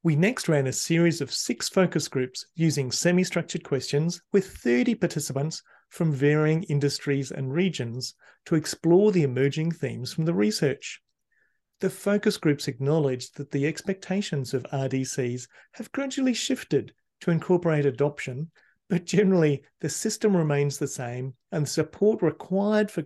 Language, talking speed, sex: English, 140 wpm, male